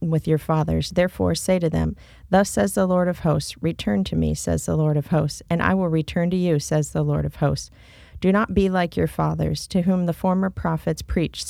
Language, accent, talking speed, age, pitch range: English, American, 230 wpm, 40-59, 150-185 Hz